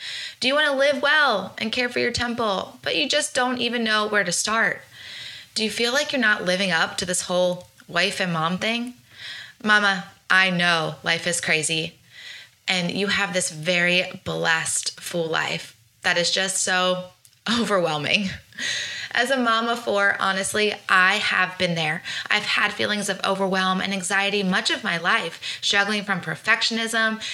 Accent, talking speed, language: American, 170 wpm, English